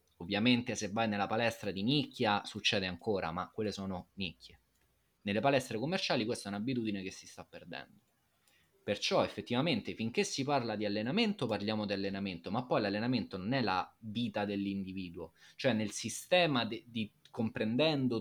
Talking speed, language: 155 wpm, Italian